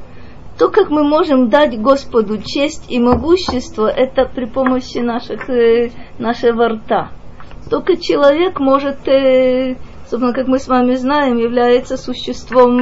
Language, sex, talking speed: Russian, female, 125 wpm